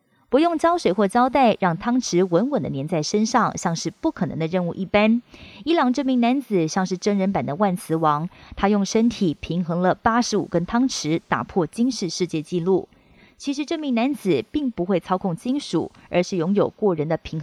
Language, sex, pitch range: Chinese, female, 180-240 Hz